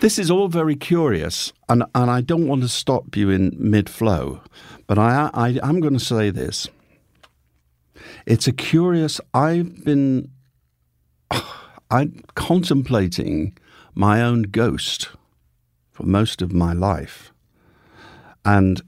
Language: English